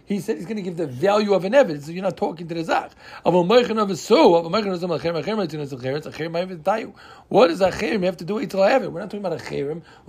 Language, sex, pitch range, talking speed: English, male, 175-220 Hz, 210 wpm